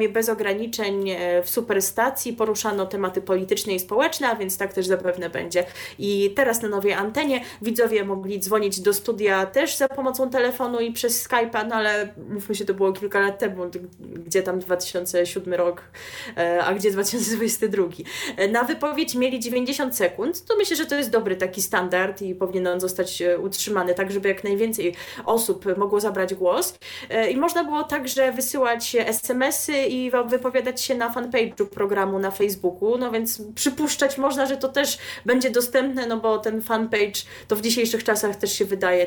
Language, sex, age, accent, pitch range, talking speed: Polish, female, 20-39, native, 185-245 Hz, 165 wpm